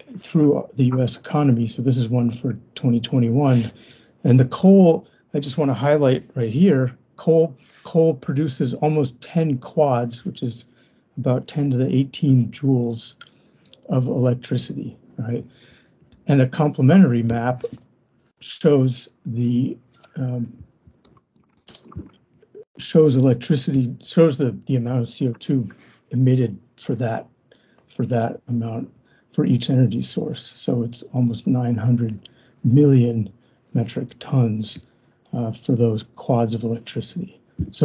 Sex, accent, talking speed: male, American, 120 wpm